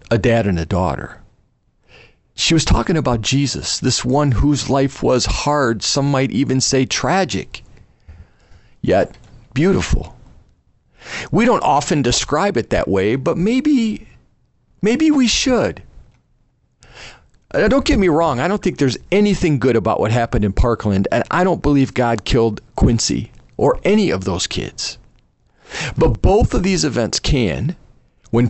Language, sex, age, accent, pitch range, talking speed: English, male, 40-59, American, 115-170 Hz, 145 wpm